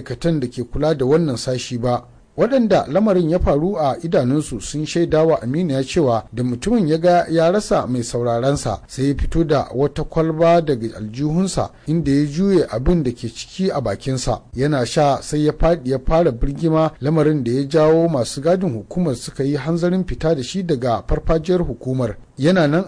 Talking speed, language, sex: 165 wpm, English, male